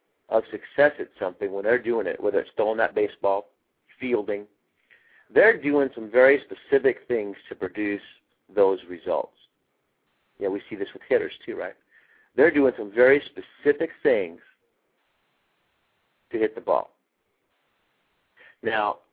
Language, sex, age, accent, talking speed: English, male, 50-69, American, 135 wpm